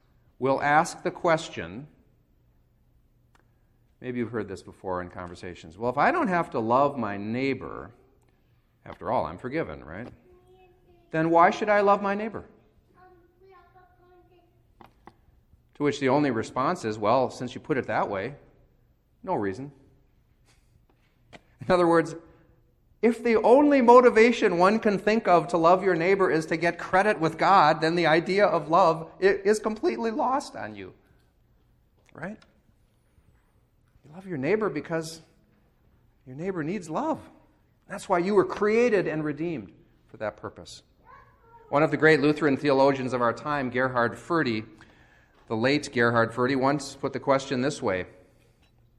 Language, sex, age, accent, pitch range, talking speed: English, male, 40-59, American, 120-180 Hz, 145 wpm